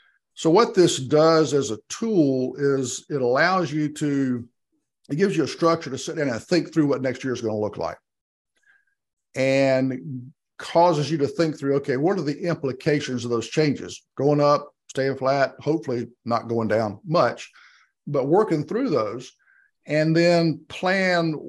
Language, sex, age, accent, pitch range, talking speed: English, male, 50-69, American, 120-155 Hz, 170 wpm